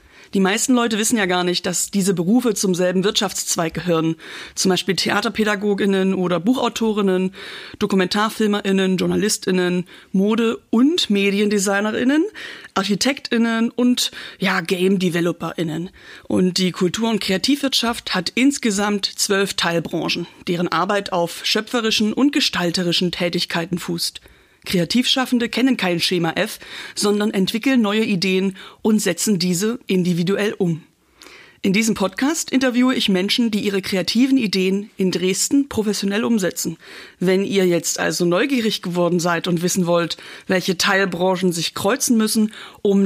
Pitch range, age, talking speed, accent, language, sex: 180-220 Hz, 40-59, 125 wpm, German, German, female